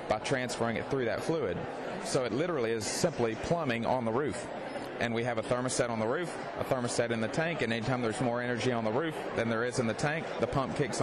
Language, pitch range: English, 110-125 Hz